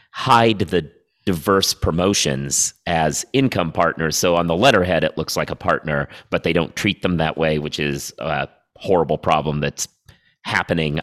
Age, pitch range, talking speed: 30-49, 75-95 Hz, 165 wpm